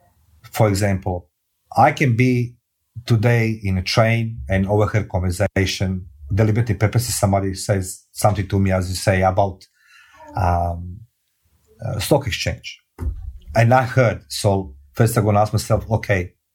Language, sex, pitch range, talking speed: English, male, 95-120 Hz, 135 wpm